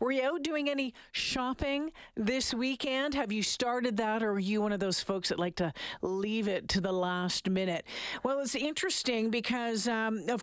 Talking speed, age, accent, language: 195 wpm, 50-69, American, English